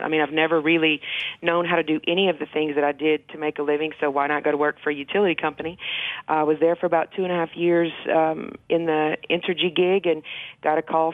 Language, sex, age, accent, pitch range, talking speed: English, female, 40-59, American, 155-175 Hz, 265 wpm